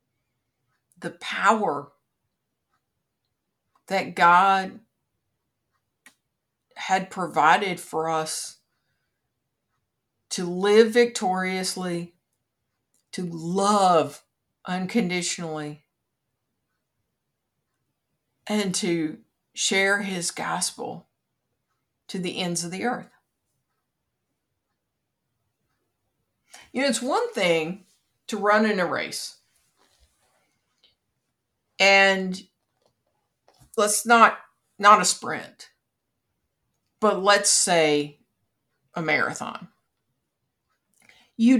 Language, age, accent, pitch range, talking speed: English, 50-69, American, 160-210 Hz, 70 wpm